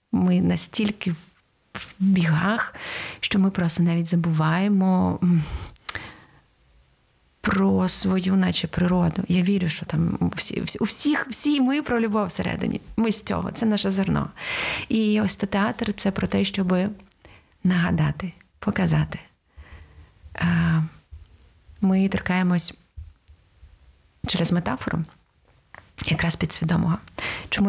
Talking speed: 105 wpm